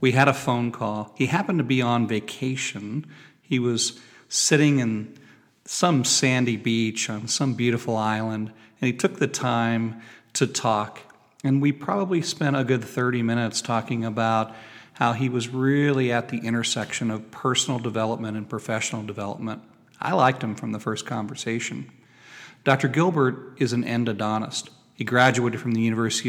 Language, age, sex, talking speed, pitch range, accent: English, 40-59, male, 160 wpm, 110-130 Hz, American